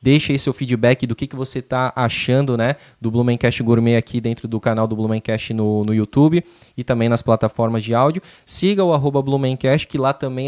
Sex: male